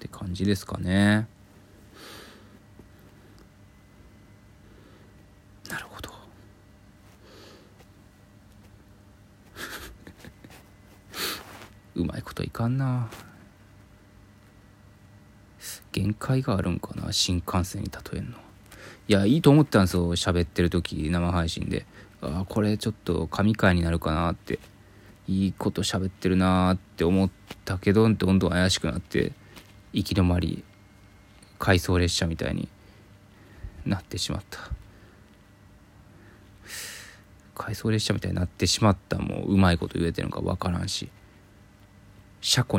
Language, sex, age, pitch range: Japanese, male, 20-39, 95-105 Hz